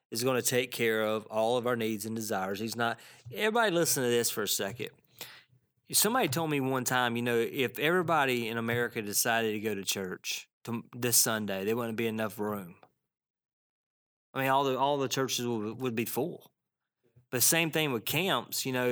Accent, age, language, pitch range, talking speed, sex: American, 30-49, English, 115-135 Hz, 195 wpm, male